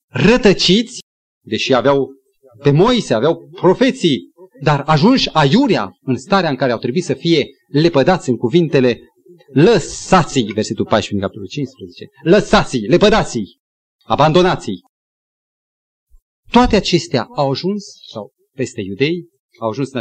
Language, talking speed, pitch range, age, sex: Romanian, 110 wpm, 120-195 Hz, 40-59, male